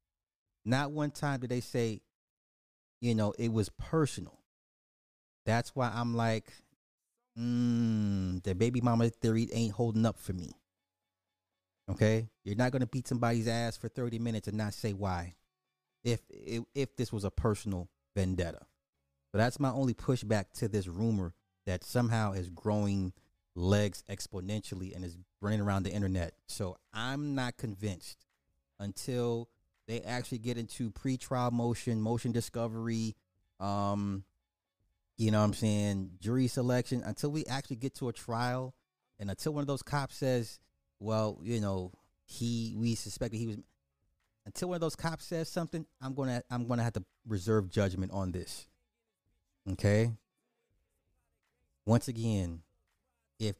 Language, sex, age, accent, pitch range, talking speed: English, male, 30-49, American, 95-120 Hz, 150 wpm